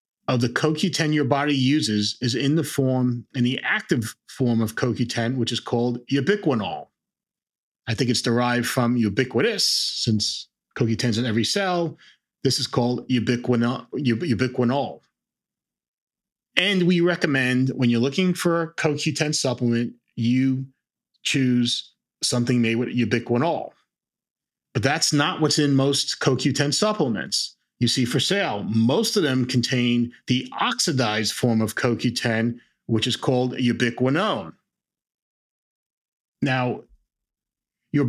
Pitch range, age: 120-150 Hz, 30-49